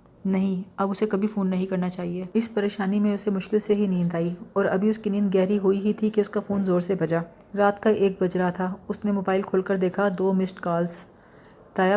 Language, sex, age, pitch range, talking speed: Urdu, female, 30-49, 185-205 Hz, 240 wpm